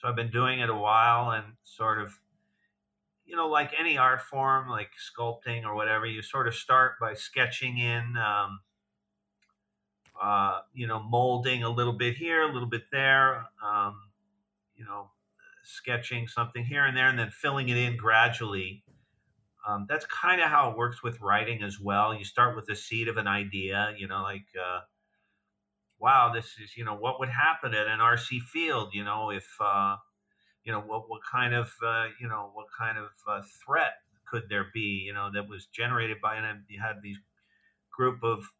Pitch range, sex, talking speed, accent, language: 105-130 Hz, male, 190 wpm, American, English